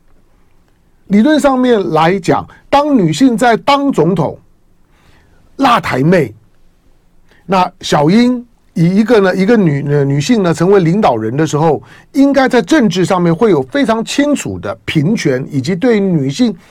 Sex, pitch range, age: male, 150-215 Hz, 50-69